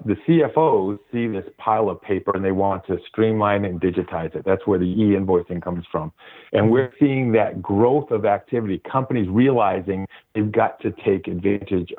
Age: 50-69